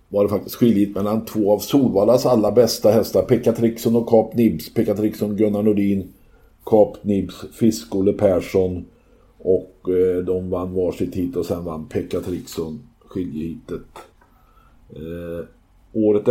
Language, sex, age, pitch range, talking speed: Swedish, male, 50-69, 95-110 Hz, 145 wpm